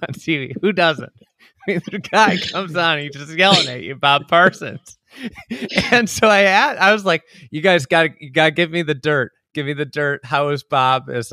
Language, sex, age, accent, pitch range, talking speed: English, male, 30-49, American, 120-165 Hz, 205 wpm